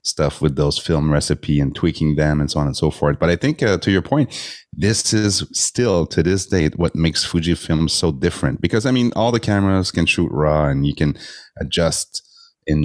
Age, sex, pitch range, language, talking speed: 30-49, male, 75-95 Hz, English, 215 wpm